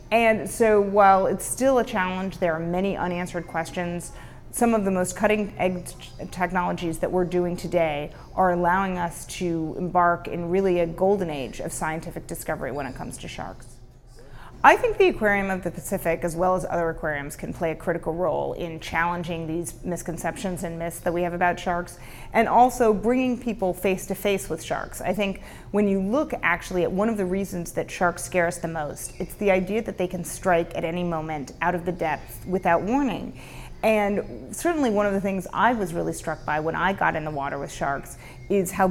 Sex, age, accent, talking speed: female, 30-49, American, 200 wpm